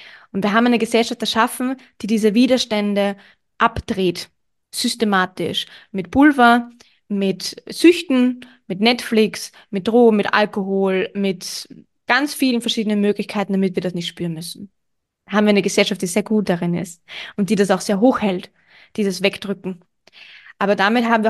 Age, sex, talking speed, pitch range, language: 20-39, female, 150 wpm, 195-230 Hz, German